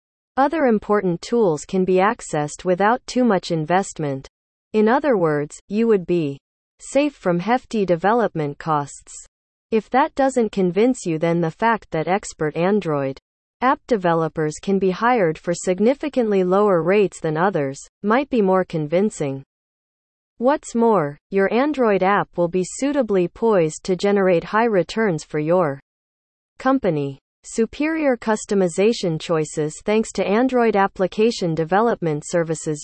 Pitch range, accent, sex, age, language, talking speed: 160-225 Hz, American, female, 40-59, English, 130 wpm